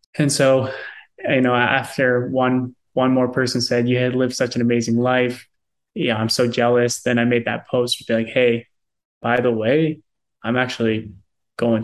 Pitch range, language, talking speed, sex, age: 115-125 Hz, English, 180 wpm, male, 20-39